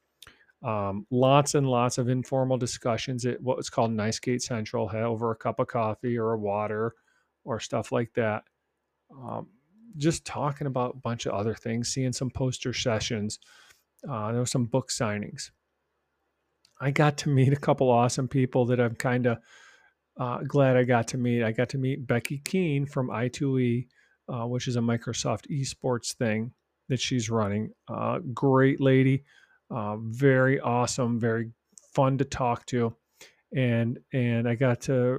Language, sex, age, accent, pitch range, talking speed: English, male, 40-59, American, 115-135 Hz, 165 wpm